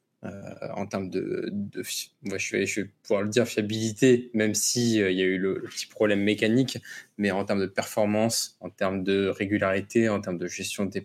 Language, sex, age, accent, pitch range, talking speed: French, male, 20-39, French, 100-120 Hz, 225 wpm